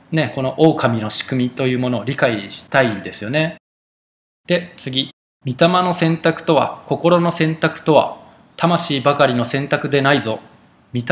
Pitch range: 125-165 Hz